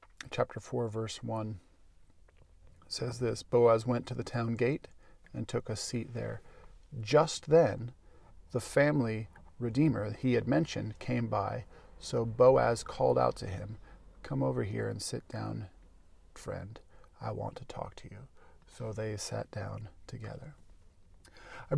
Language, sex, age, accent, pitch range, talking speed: English, male, 40-59, American, 85-125 Hz, 145 wpm